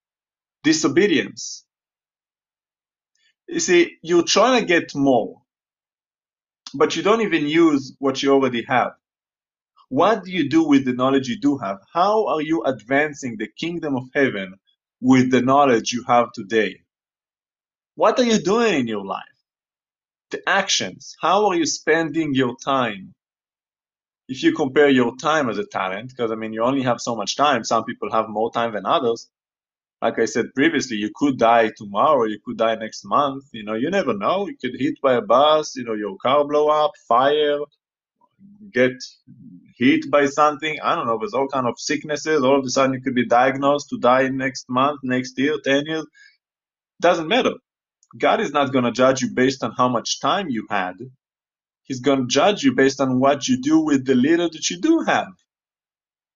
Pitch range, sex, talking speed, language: 125-165 Hz, male, 180 wpm, English